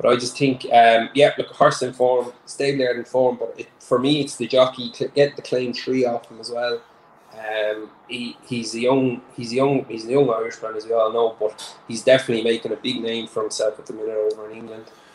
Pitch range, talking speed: 110-135 Hz, 240 wpm